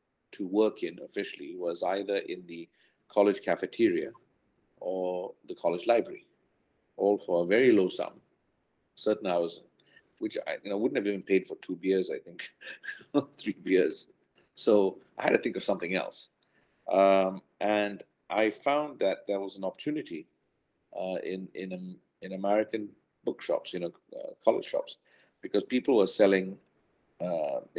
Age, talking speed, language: 50-69, 150 wpm, English